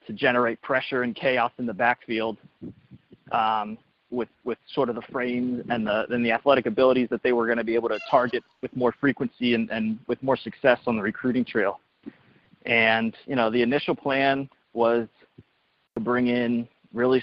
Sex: male